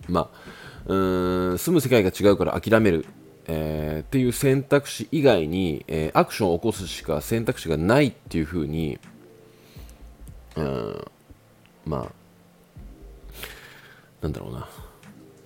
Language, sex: Japanese, male